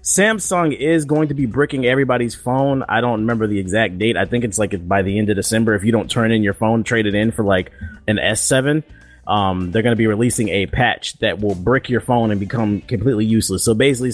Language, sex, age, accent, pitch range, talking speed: English, male, 30-49, American, 105-145 Hz, 240 wpm